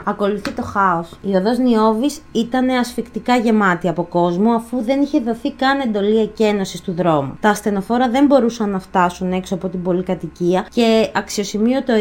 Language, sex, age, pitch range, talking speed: Greek, female, 20-39, 205-255 Hz, 155 wpm